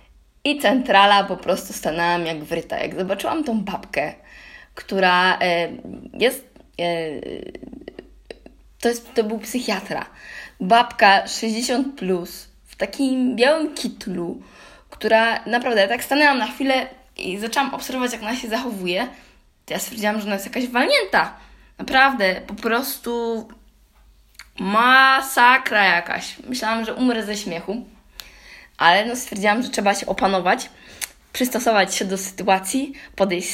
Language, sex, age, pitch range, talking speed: Polish, female, 20-39, 195-255 Hz, 125 wpm